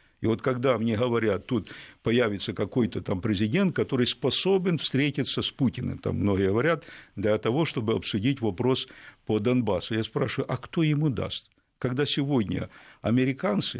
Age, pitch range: 50-69, 110-145 Hz